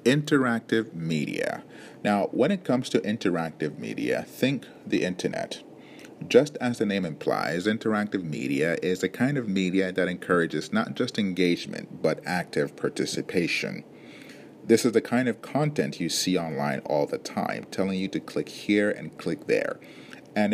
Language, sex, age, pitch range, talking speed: English, male, 40-59, 85-115 Hz, 155 wpm